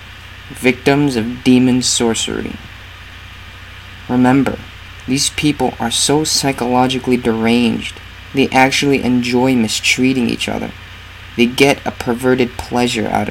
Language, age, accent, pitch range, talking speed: English, 30-49, American, 95-125 Hz, 105 wpm